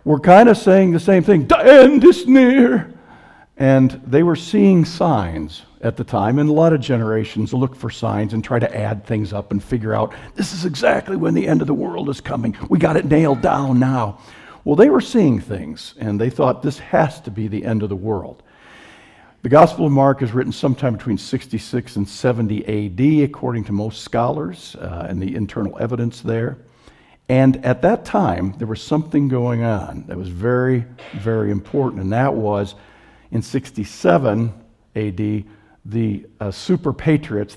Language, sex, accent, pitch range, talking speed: English, male, American, 110-140 Hz, 185 wpm